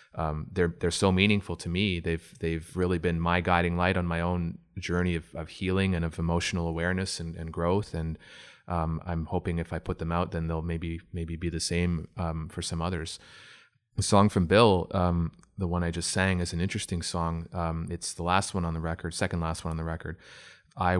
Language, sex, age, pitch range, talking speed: English, male, 30-49, 85-90 Hz, 220 wpm